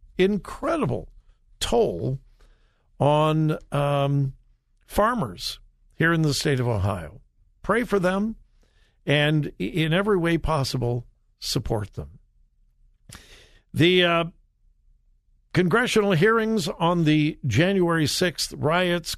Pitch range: 130-175 Hz